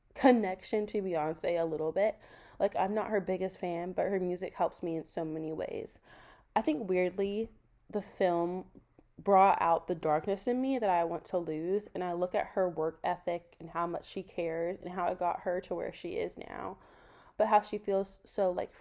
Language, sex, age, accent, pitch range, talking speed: English, female, 20-39, American, 170-200 Hz, 205 wpm